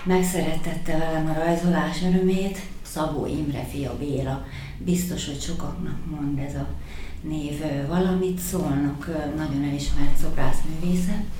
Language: Hungarian